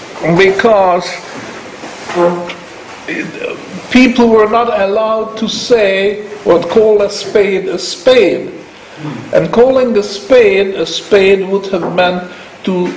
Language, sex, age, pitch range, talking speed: English, male, 60-79, 155-220 Hz, 105 wpm